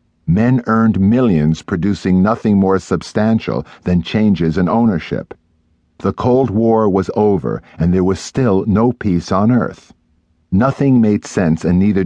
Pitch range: 80-105 Hz